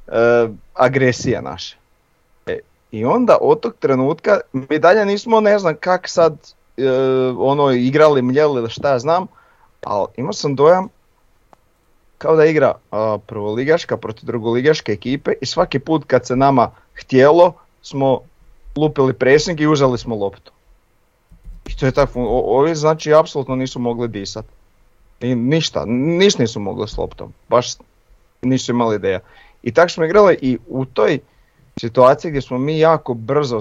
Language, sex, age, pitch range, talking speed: Croatian, male, 40-59, 115-145 Hz, 150 wpm